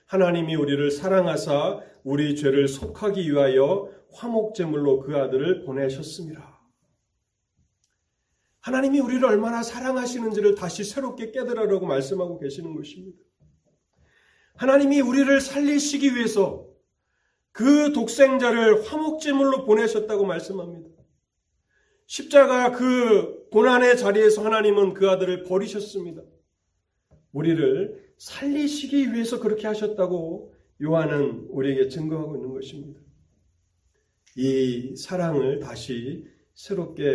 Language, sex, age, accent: Korean, male, 40-59, native